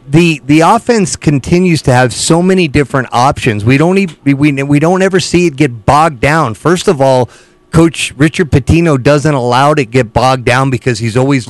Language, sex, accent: English, male, American